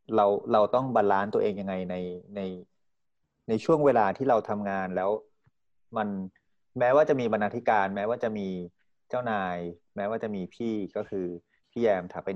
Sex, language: male, Thai